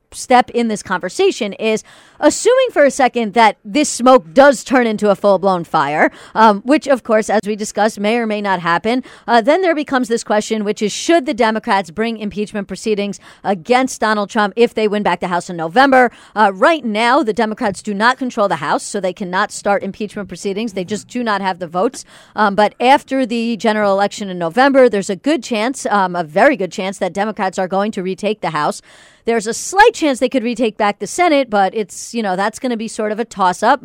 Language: English